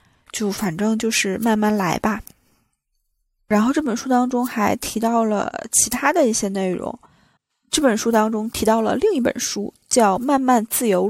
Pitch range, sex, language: 195-240 Hz, female, Chinese